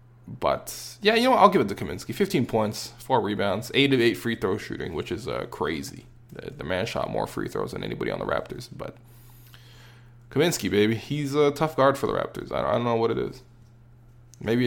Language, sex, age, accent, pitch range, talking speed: English, male, 20-39, American, 110-125 Hz, 215 wpm